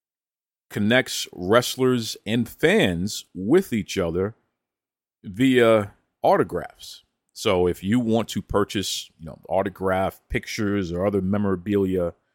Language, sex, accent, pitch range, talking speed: English, male, American, 95-125 Hz, 105 wpm